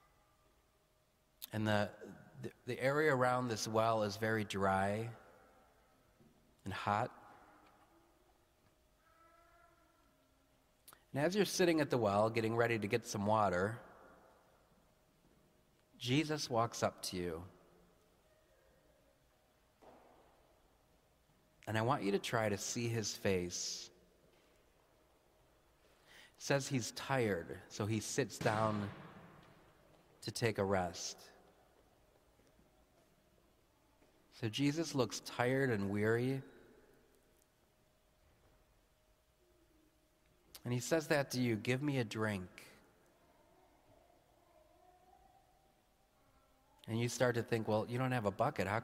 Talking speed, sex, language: 100 wpm, male, English